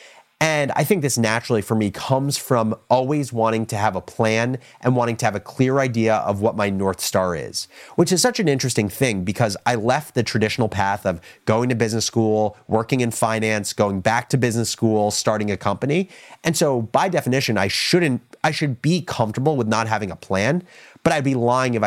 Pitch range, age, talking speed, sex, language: 105-135 Hz, 30-49, 210 wpm, male, English